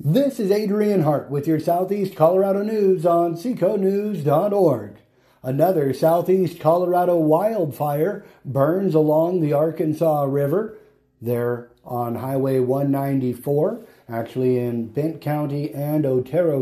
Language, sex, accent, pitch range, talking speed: English, male, American, 115-140 Hz, 110 wpm